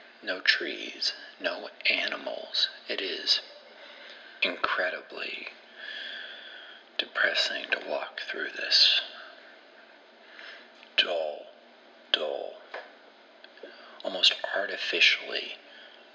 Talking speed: 60 wpm